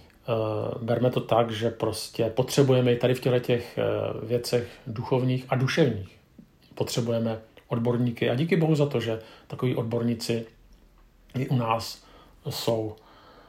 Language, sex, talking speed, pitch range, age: Czech, male, 125 wpm, 115-135 Hz, 40-59